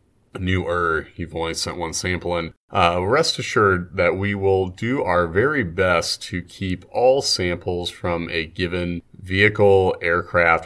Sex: male